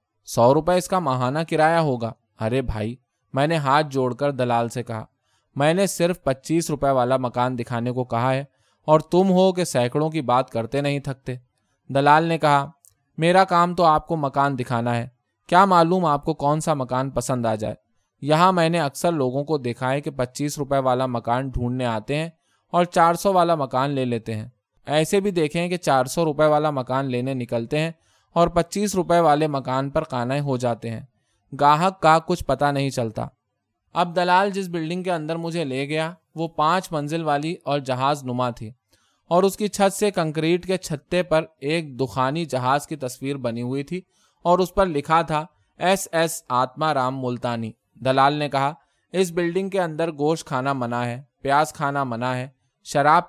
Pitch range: 125-165 Hz